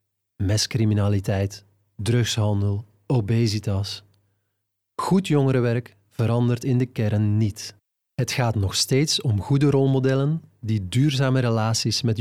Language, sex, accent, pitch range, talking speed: Dutch, male, Dutch, 105-135 Hz, 105 wpm